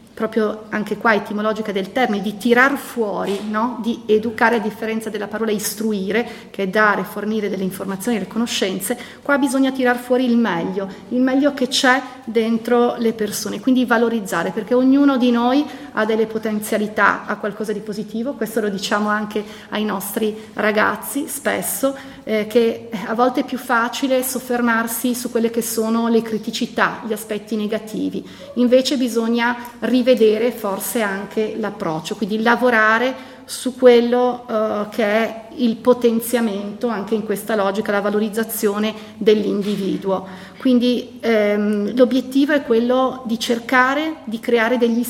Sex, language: female, Italian